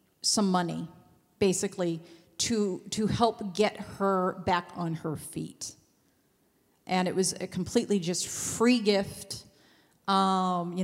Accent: American